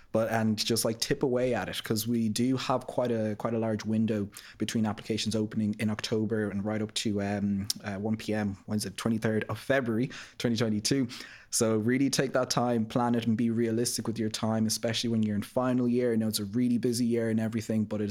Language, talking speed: English, 230 wpm